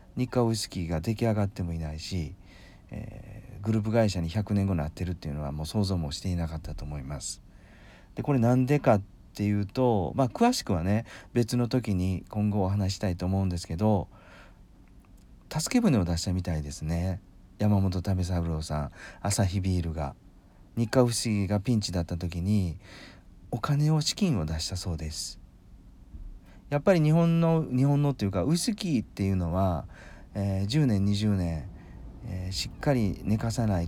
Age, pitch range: 40-59, 90-120 Hz